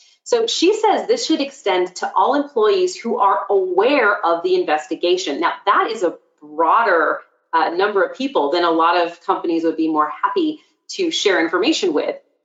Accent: American